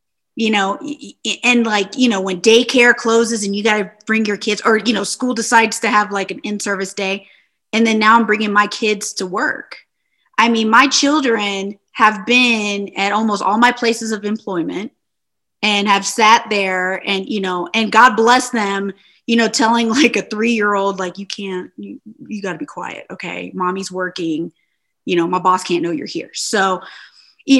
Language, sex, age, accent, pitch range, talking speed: English, female, 20-39, American, 190-225 Hz, 190 wpm